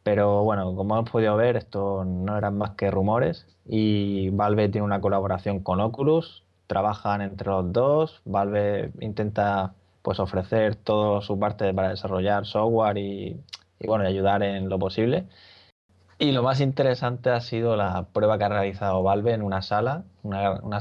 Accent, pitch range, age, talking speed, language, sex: Spanish, 95-110 Hz, 20-39, 165 wpm, Spanish, male